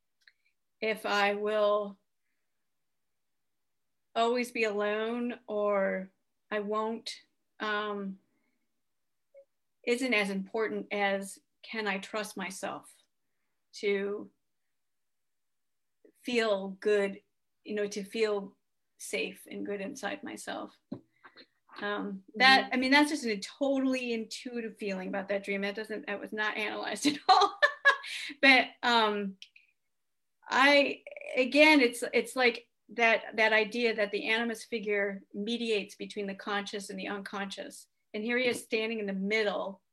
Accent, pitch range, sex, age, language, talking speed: American, 200-235 Hz, female, 40-59, English, 120 wpm